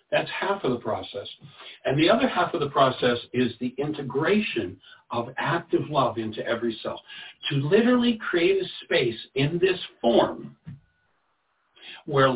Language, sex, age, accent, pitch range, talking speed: English, male, 60-79, American, 140-210 Hz, 145 wpm